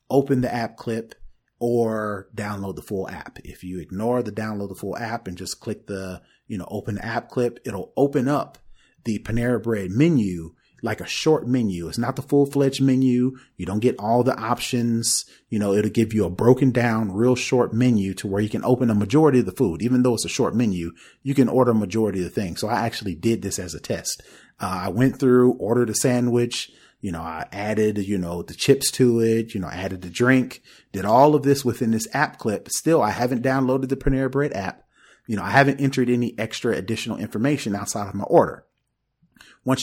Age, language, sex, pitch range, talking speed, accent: 30-49, English, male, 100-125 Hz, 220 wpm, American